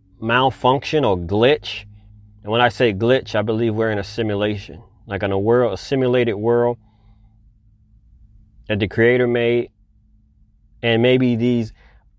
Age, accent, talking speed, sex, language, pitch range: 30-49, American, 140 wpm, male, English, 110-145 Hz